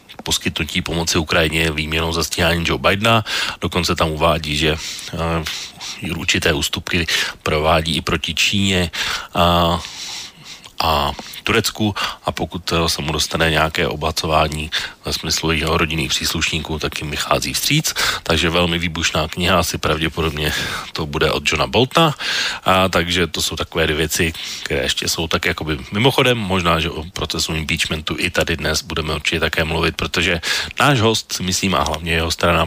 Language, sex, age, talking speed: Slovak, male, 40-59, 150 wpm